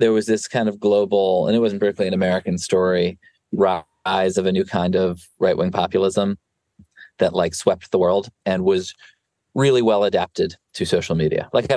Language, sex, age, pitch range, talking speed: English, male, 20-39, 90-115 Hz, 185 wpm